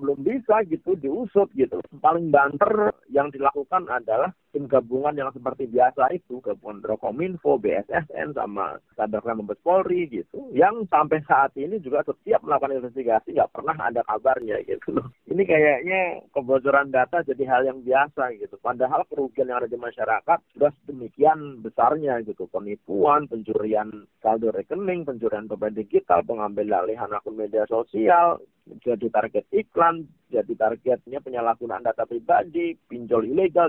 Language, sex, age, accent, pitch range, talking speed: Indonesian, male, 40-59, native, 125-180 Hz, 135 wpm